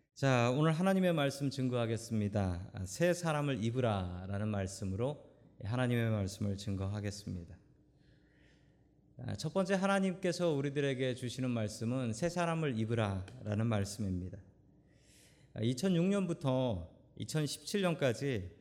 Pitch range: 105-145 Hz